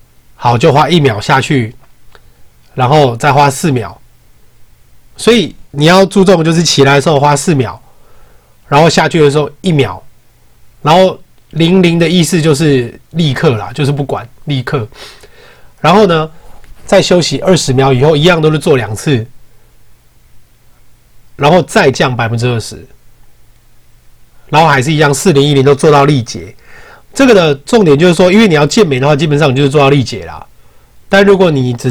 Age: 30-49